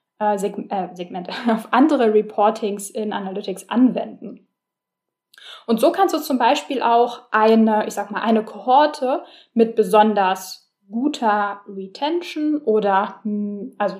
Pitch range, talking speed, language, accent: 205-260 Hz, 120 wpm, German, German